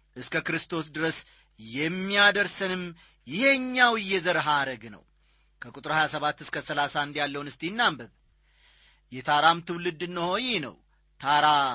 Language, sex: Amharic, male